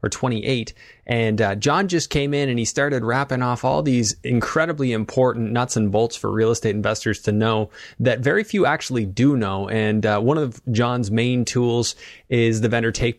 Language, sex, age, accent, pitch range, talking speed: English, male, 20-39, American, 110-130 Hz, 195 wpm